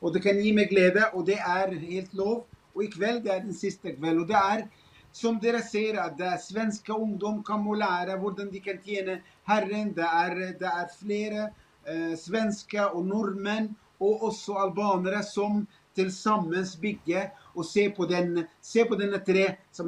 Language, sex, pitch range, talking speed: English, male, 180-210 Hz, 200 wpm